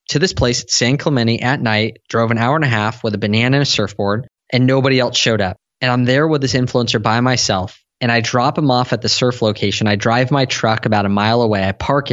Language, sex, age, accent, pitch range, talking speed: English, male, 20-39, American, 110-135 Hz, 255 wpm